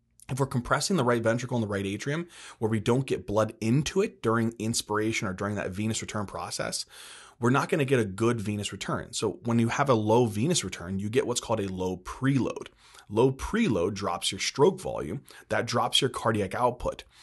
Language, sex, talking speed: English, male, 210 wpm